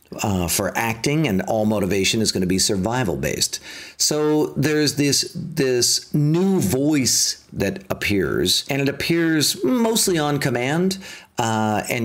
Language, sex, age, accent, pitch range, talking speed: English, male, 50-69, American, 110-150 Hz, 135 wpm